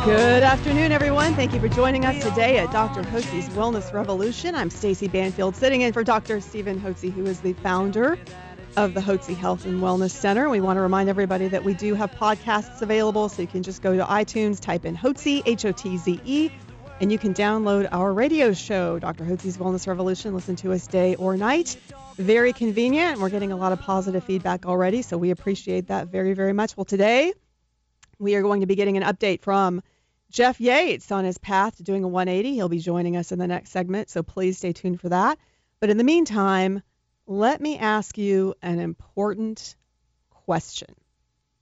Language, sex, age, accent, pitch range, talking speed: English, female, 40-59, American, 185-215 Hz, 195 wpm